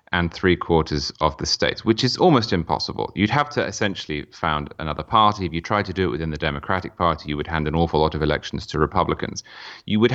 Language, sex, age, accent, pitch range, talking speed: English, male, 30-49, British, 80-105 Hz, 230 wpm